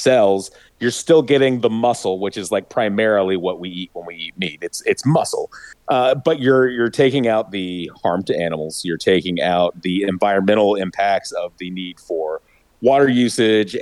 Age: 30-49